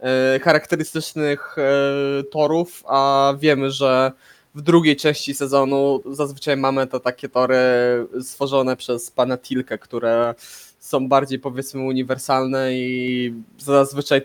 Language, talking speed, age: Polish, 110 wpm, 20-39